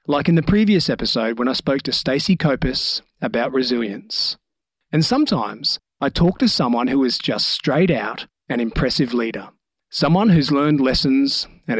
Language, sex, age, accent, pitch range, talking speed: English, male, 40-59, Australian, 125-175 Hz, 165 wpm